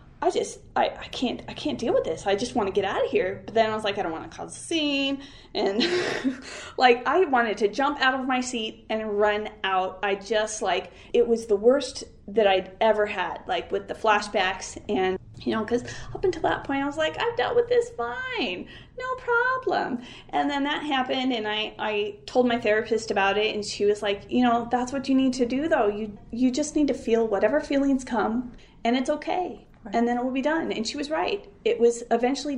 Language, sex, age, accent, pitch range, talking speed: English, female, 30-49, American, 210-275 Hz, 230 wpm